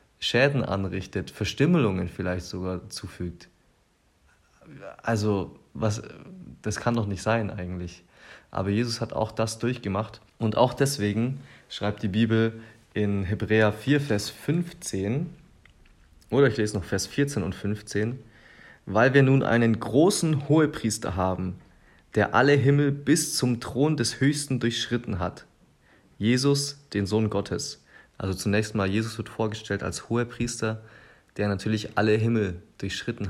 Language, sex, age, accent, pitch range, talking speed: German, male, 30-49, German, 100-115 Hz, 135 wpm